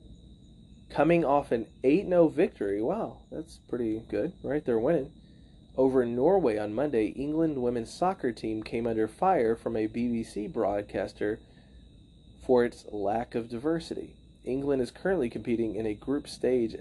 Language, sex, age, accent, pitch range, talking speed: English, male, 30-49, American, 105-130 Hz, 145 wpm